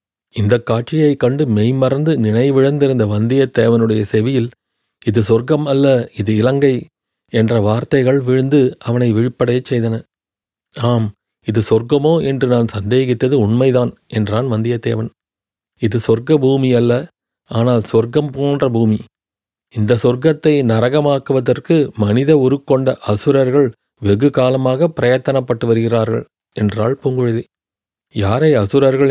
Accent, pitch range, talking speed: native, 110-135 Hz, 100 wpm